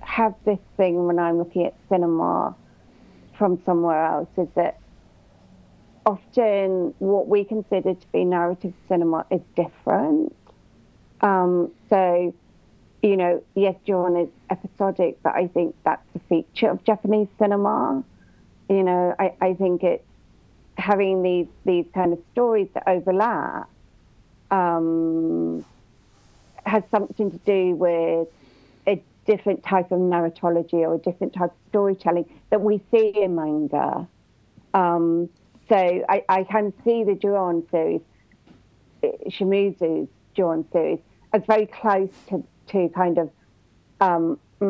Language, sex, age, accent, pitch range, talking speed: English, female, 40-59, British, 170-200 Hz, 130 wpm